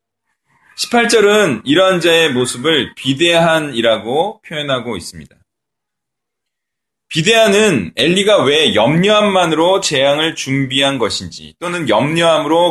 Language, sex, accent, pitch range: Korean, male, native, 145-230 Hz